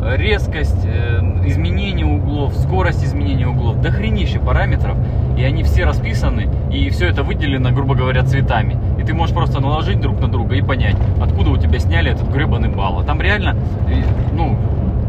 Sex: male